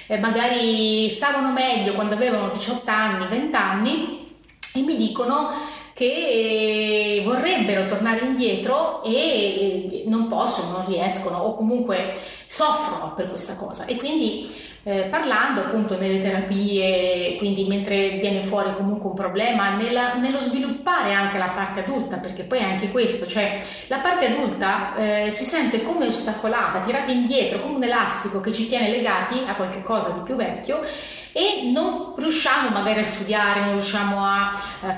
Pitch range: 200-260 Hz